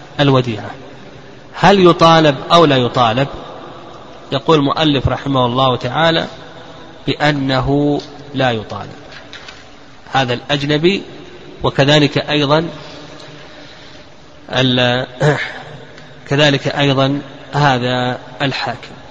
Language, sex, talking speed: Arabic, male, 70 wpm